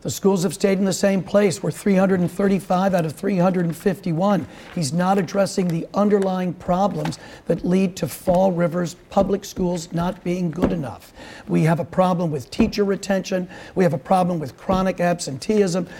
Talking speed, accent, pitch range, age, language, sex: 165 wpm, American, 165-195 Hz, 60-79, English, male